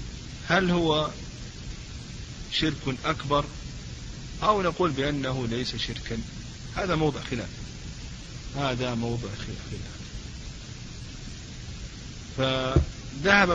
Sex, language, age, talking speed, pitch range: male, Arabic, 50-69, 70 wpm, 120-145 Hz